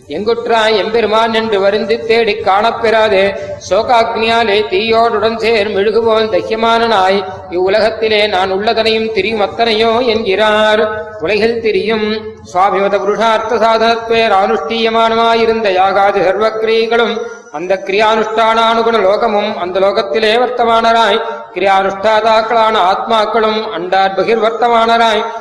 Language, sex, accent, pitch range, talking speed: Tamil, male, native, 205-225 Hz, 80 wpm